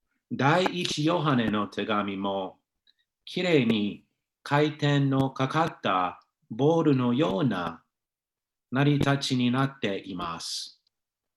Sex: male